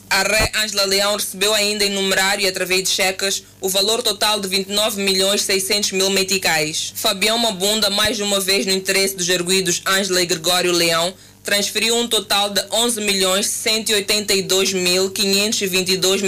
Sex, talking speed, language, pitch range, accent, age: female, 135 wpm, Portuguese, 180-200 Hz, Brazilian, 20-39